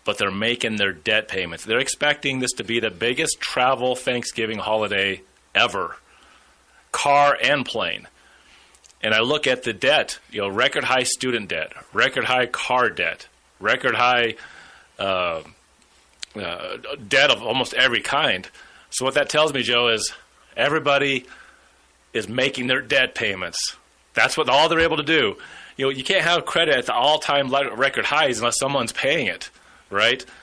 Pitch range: 115-140 Hz